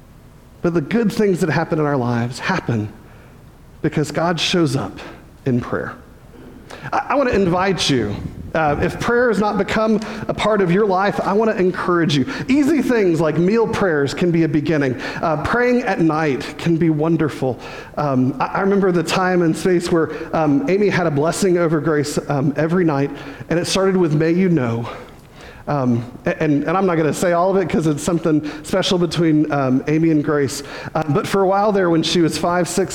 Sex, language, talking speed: male, English, 200 wpm